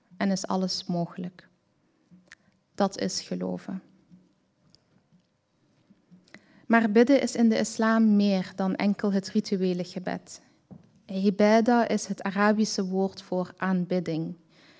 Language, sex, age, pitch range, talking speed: Dutch, female, 20-39, 180-210 Hz, 105 wpm